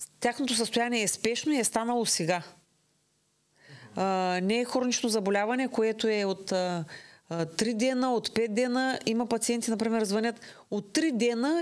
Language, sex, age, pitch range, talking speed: Bulgarian, female, 30-49, 185-255 Hz, 140 wpm